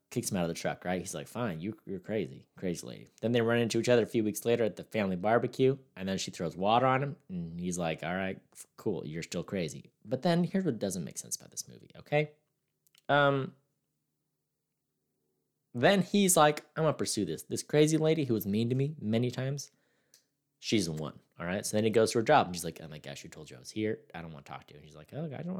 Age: 20-39